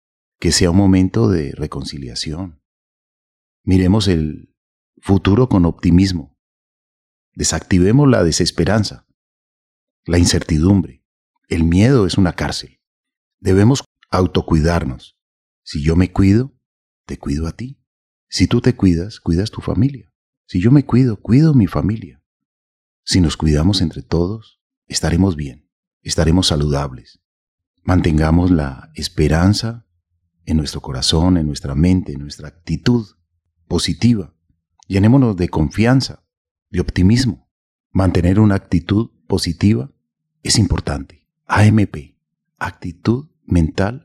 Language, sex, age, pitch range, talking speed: Spanish, male, 40-59, 85-115 Hz, 110 wpm